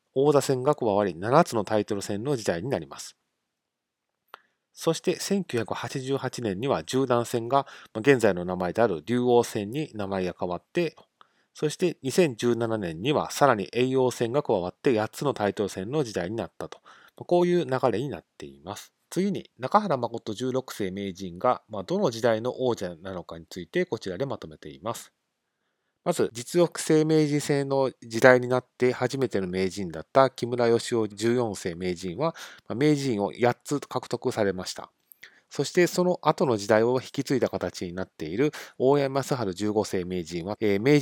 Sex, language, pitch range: male, Japanese, 105-145 Hz